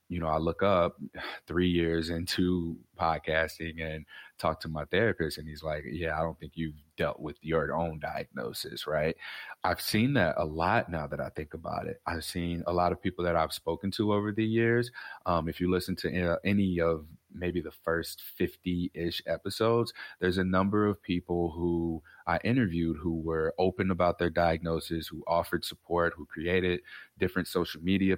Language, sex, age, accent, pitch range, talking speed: English, male, 30-49, American, 80-95 Hz, 185 wpm